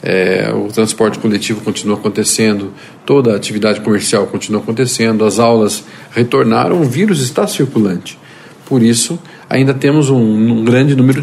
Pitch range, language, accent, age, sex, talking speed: 110-140 Hz, Portuguese, Brazilian, 50-69, male, 140 wpm